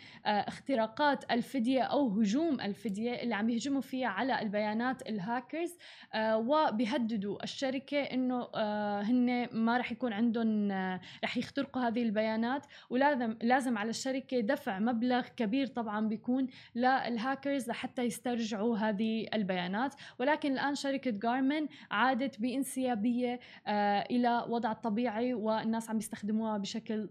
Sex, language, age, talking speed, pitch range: female, Arabic, 20-39, 125 wpm, 225-275 Hz